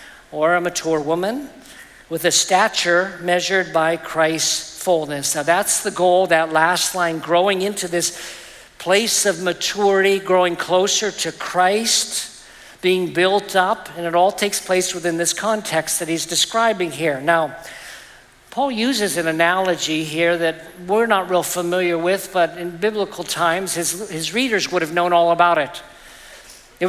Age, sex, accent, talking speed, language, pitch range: 50-69, male, American, 155 wpm, English, 175-215 Hz